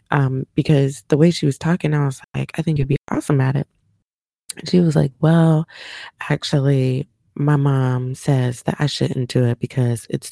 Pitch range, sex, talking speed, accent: 130-170 Hz, female, 190 wpm, American